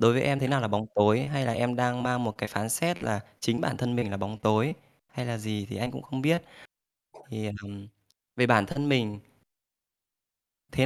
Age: 20-39